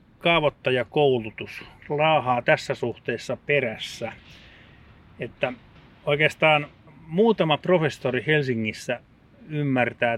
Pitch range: 120-145 Hz